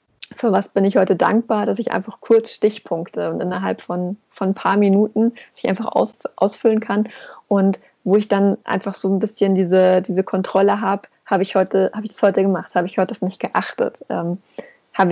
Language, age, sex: German, 20-39, female